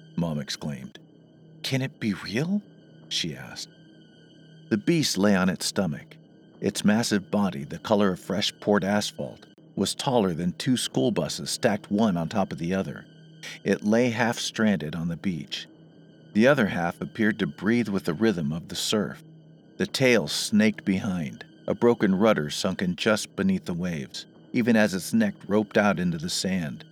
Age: 50-69